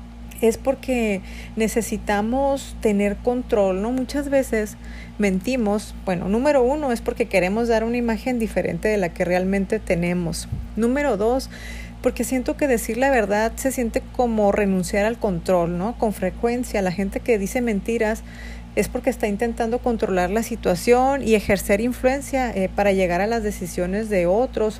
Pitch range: 190-235 Hz